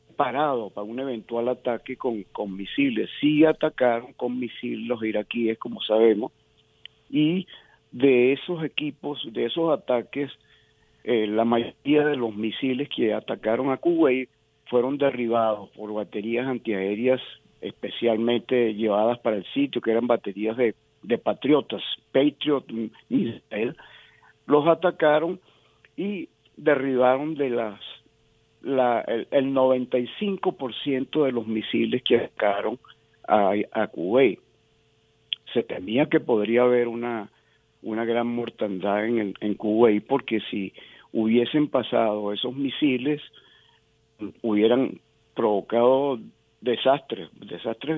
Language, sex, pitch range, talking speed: Spanish, male, 110-140 Hz, 115 wpm